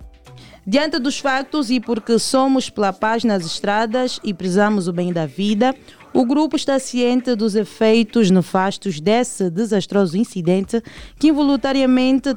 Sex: female